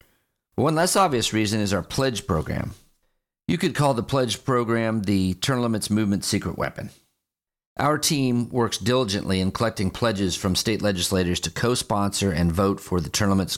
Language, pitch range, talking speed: English, 95-125 Hz, 170 wpm